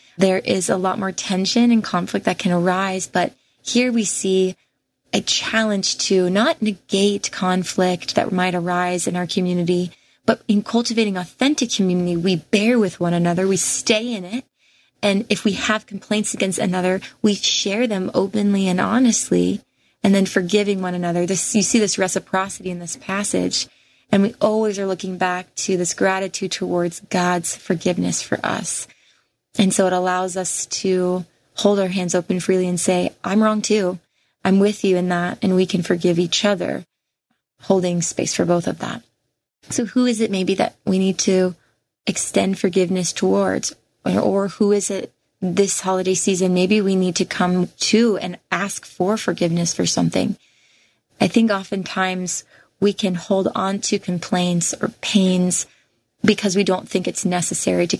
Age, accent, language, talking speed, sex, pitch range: 20-39, American, English, 170 wpm, female, 180-205 Hz